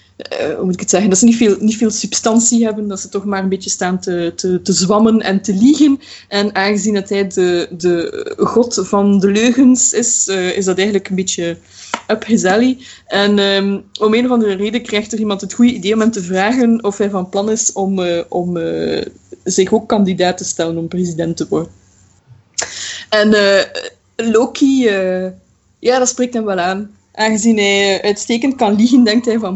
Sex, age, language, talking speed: female, 20-39, English, 205 wpm